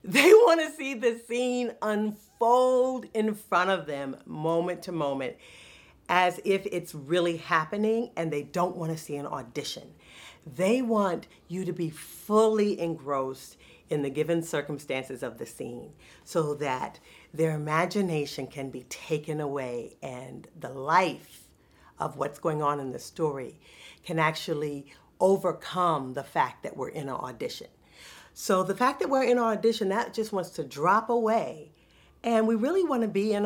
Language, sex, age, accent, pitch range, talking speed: English, female, 50-69, American, 150-225 Hz, 160 wpm